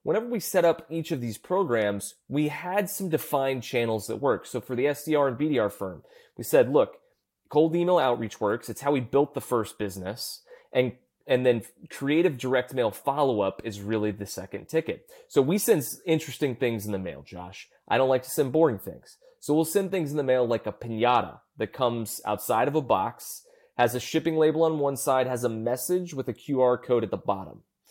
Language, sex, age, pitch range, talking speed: English, male, 30-49, 115-155 Hz, 210 wpm